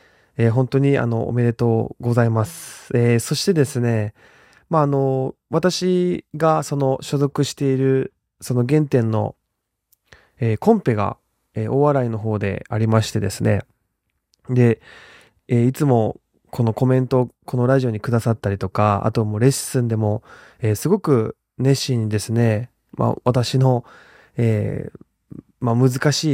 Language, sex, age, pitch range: Japanese, male, 20-39, 110-145 Hz